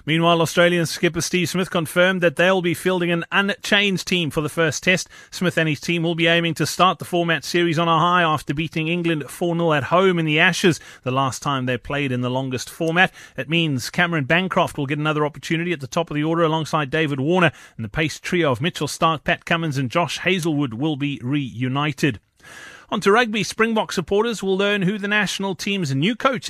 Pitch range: 150-180 Hz